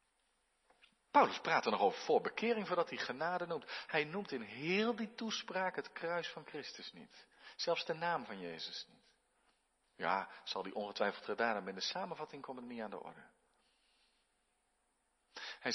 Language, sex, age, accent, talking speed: Dutch, male, 50-69, Dutch, 170 wpm